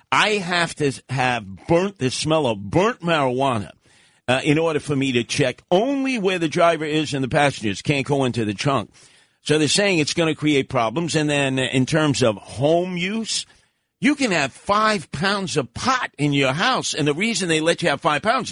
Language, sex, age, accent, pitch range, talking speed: English, male, 50-69, American, 120-165 Hz, 205 wpm